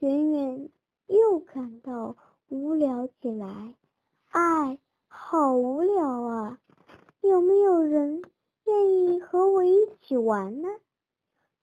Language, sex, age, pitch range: Chinese, male, 10-29, 250-370 Hz